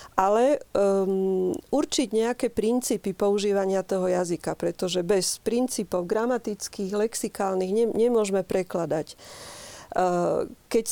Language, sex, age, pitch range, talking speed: Slovak, female, 40-59, 195-230 Hz, 80 wpm